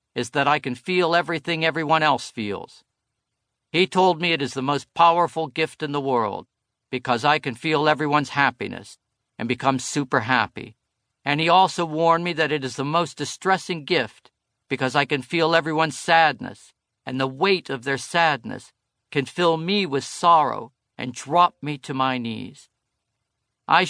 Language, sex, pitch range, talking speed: English, male, 125-170 Hz, 170 wpm